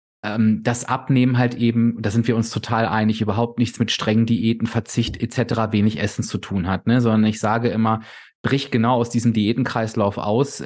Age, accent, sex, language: 30-49, German, male, German